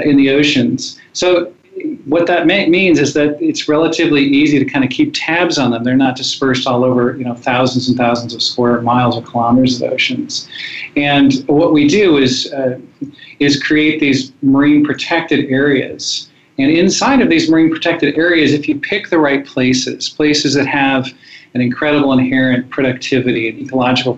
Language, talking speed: English, 175 wpm